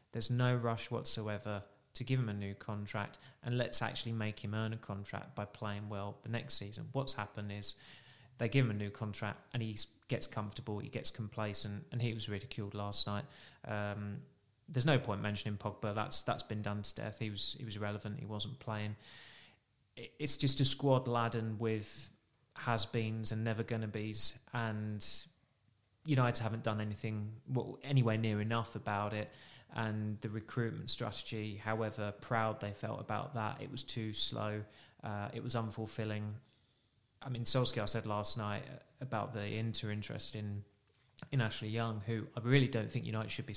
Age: 20-39